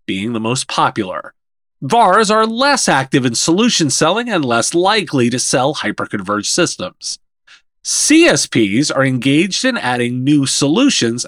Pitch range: 125-205 Hz